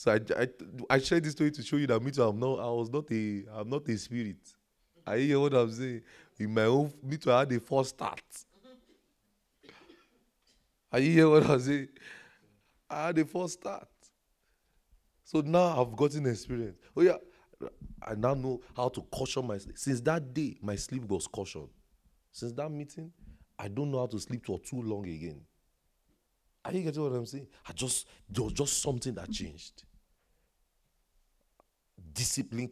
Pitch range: 105-140 Hz